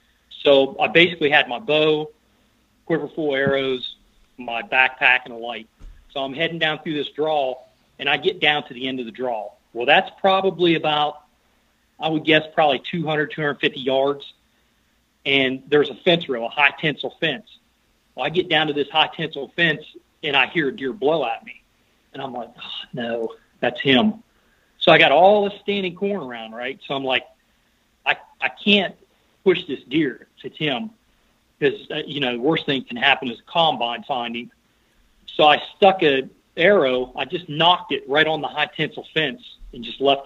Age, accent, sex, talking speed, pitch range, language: 40-59, American, male, 190 wpm, 130-165 Hz, English